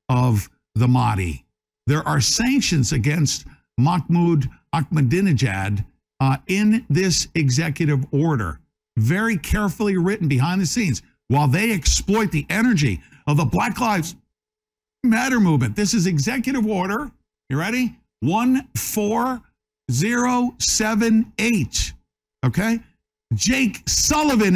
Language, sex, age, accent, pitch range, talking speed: English, male, 60-79, American, 160-255 Hz, 110 wpm